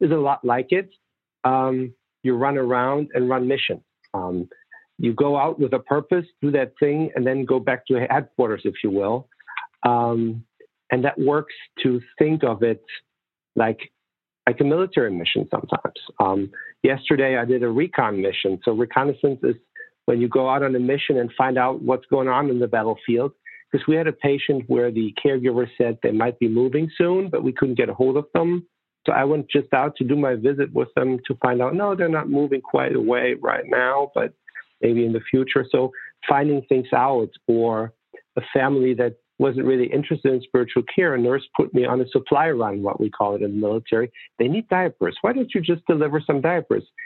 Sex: male